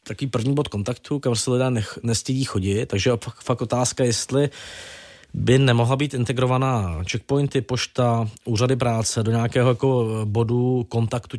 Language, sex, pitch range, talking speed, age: Czech, male, 110-125 Hz, 135 wpm, 20-39